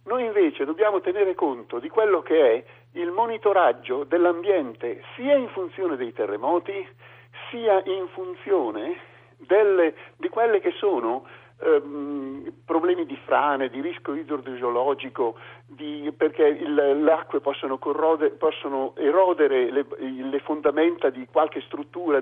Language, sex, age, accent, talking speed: Italian, male, 50-69, native, 120 wpm